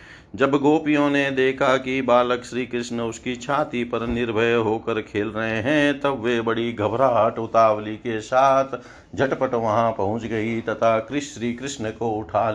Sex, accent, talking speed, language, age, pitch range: male, native, 160 wpm, Hindi, 50-69, 115-135 Hz